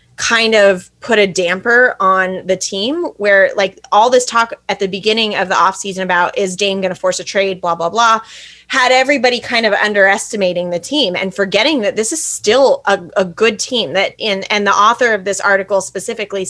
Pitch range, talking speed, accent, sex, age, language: 195-250 Hz, 205 wpm, American, female, 20-39, English